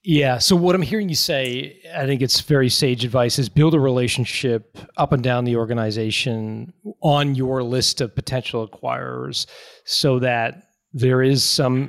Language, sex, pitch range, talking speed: English, male, 125-150 Hz, 165 wpm